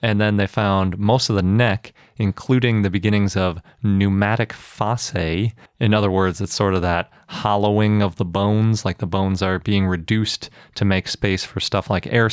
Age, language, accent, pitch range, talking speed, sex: 30-49, English, American, 95-110 Hz, 185 wpm, male